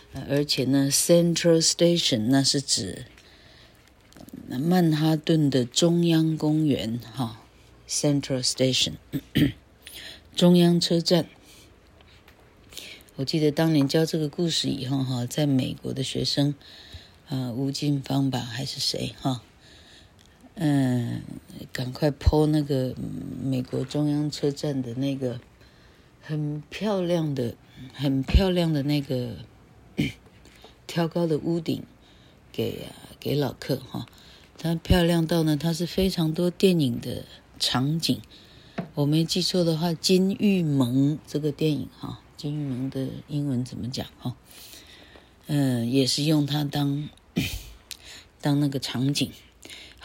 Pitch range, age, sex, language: 130-160 Hz, 50-69, female, Chinese